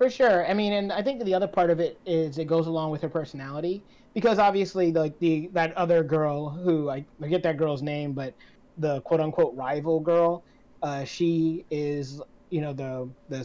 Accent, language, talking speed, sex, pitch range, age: American, English, 205 wpm, male, 145-175 Hz, 20-39